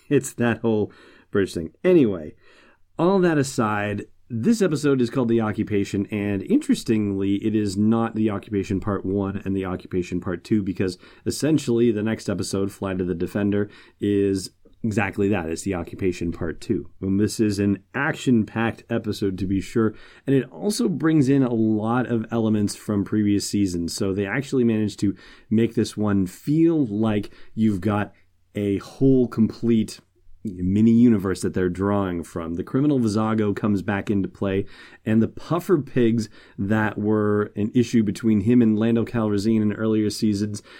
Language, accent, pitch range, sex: English, American, 100-115 Hz, male